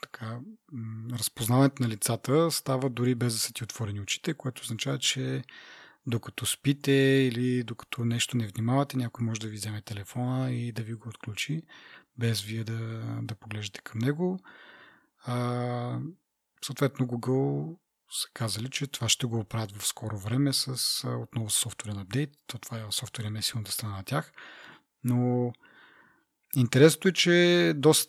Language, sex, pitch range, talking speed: Bulgarian, male, 115-145 Hz, 150 wpm